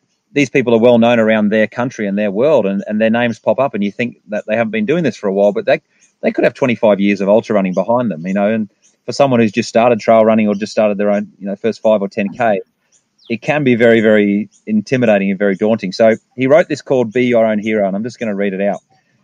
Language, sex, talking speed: English, male, 275 wpm